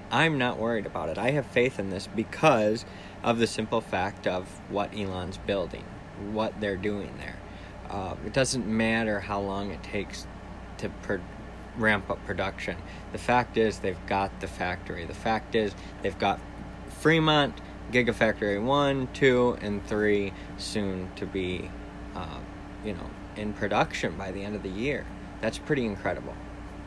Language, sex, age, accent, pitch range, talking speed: English, male, 20-39, American, 95-115 Hz, 160 wpm